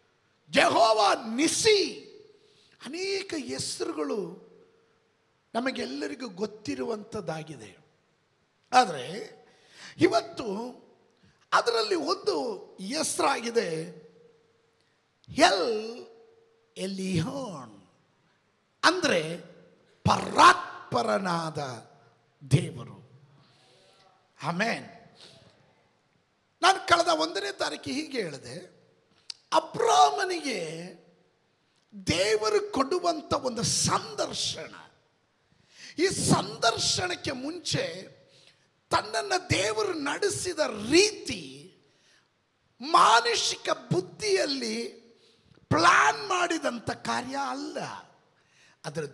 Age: 50-69